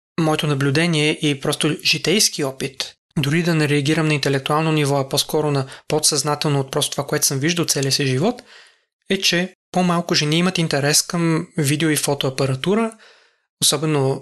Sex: male